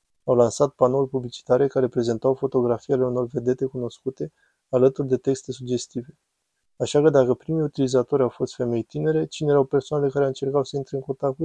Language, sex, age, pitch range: Romanian, male, 20-39, 125-140 Hz